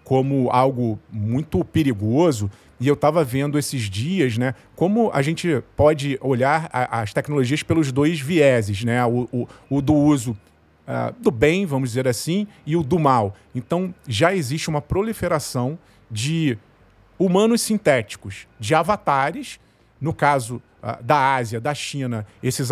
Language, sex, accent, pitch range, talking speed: Portuguese, male, Brazilian, 120-160 Hz, 135 wpm